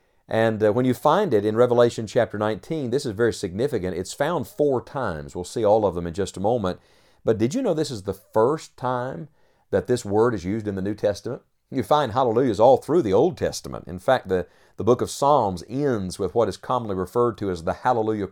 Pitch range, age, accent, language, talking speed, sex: 95-125 Hz, 50-69, American, English, 230 wpm, male